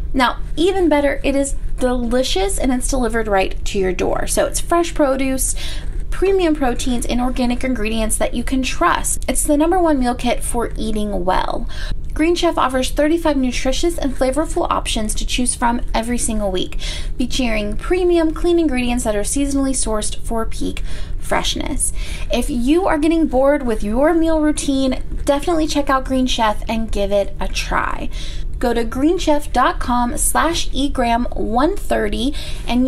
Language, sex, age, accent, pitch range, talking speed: English, female, 20-39, American, 225-310 Hz, 155 wpm